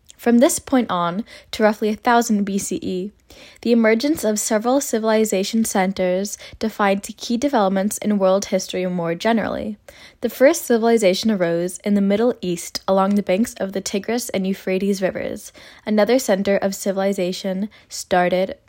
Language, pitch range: English, 190-230 Hz